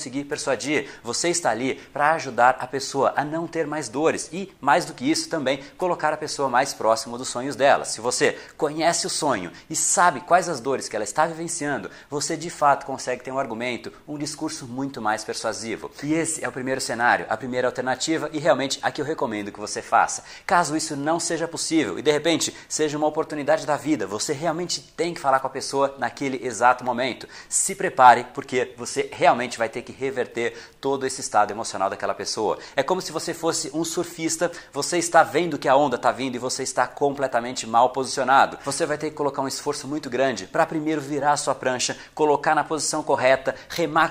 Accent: Brazilian